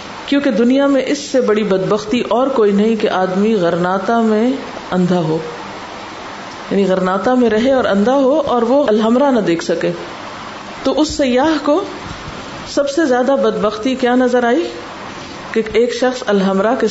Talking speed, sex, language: 155 wpm, female, Urdu